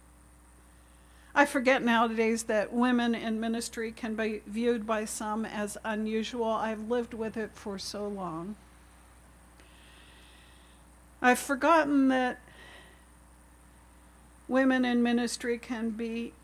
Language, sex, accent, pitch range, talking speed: English, female, American, 175-245 Hz, 105 wpm